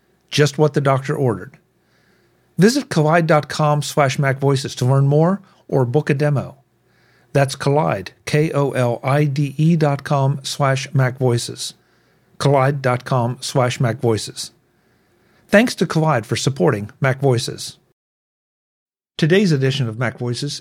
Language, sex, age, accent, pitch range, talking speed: English, male, 50-69, American, 130-160 Hz, 110 wpm